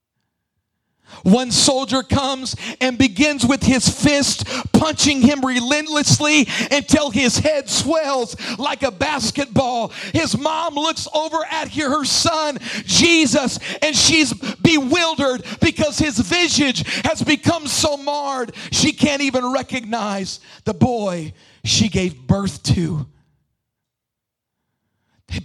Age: 50-69